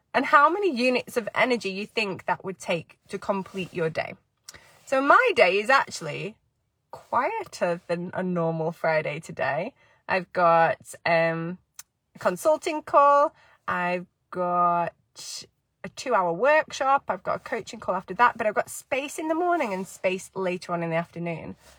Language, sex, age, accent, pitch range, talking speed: English, female, 20-39, British, 180-270 Hz, 155 wpm